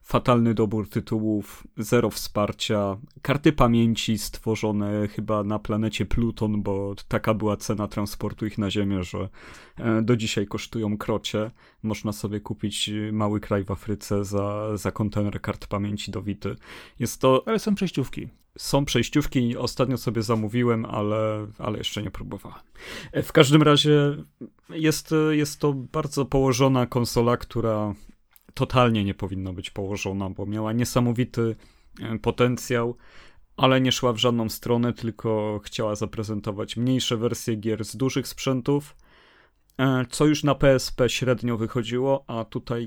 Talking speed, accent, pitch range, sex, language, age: 135 wpm, native, 105-125 Hz, male, Polish, 30-49